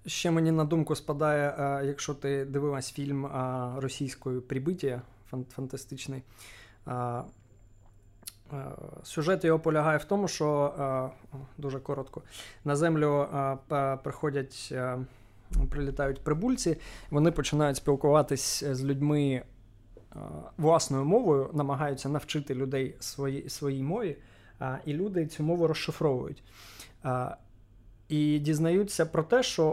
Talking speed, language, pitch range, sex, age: 95 wpm, Ukrainian, 135-155 Hz, male, 20-39